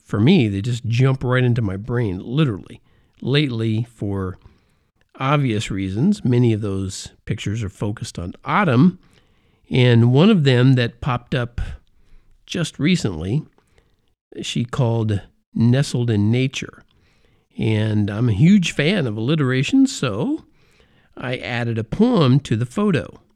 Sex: male